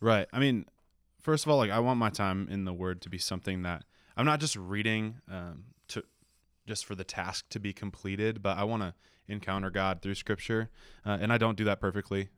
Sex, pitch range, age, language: male, 90-105 Hz, 20-39, English